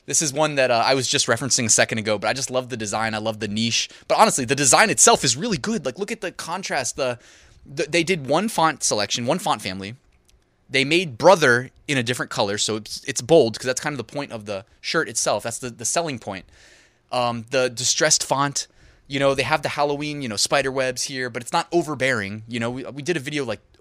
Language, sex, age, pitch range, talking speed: English, male, 20-39, 115-160 Hz, 245 wpm